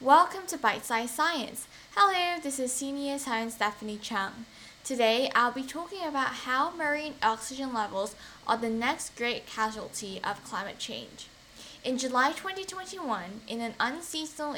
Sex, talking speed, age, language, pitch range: female, 145 wpm, 10-29, English, 220-280 Hz